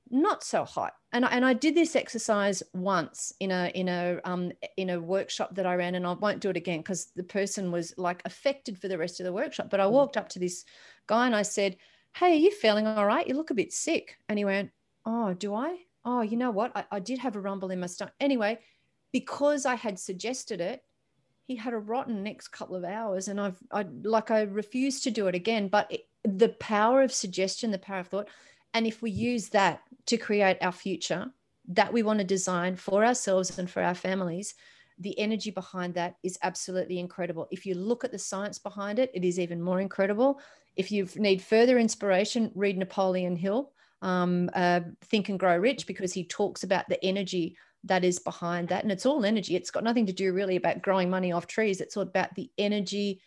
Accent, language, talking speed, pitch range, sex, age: Australian, English, 225 wpm, 185-225 Hz, female, 40-59